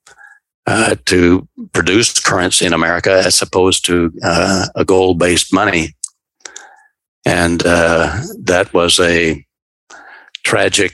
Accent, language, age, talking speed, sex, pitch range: American, English, 60-79, 105 wpm, male, 90-100 Hz